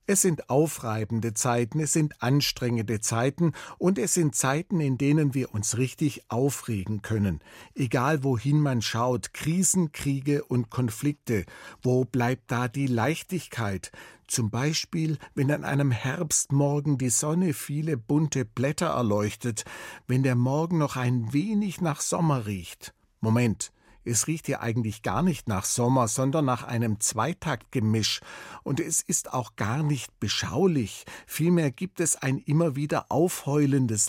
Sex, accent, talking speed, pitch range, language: male, German, 140 wpm, 115-150 Hz, German